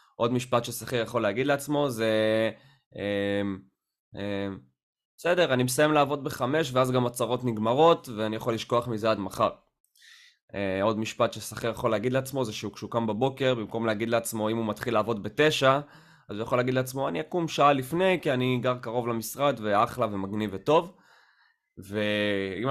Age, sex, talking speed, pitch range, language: 20-39, male, 160 wpm, 110-135 Hz, Hebrew